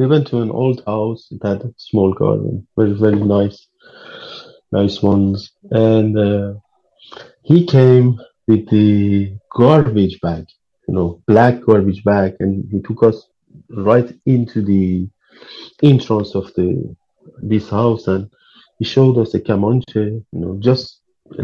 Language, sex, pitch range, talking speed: Arabic, male, 105-130 Hz, 145 wpm